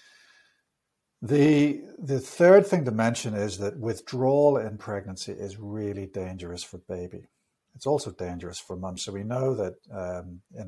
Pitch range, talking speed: 90-125 Hz, 150 wpm